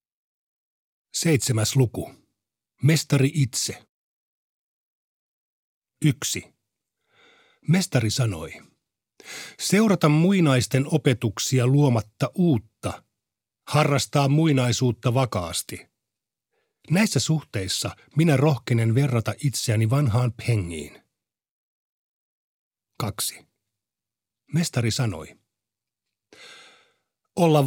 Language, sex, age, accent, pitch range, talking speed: Finnish, male, 50-69, native, 110-150 Hz, 60 wpm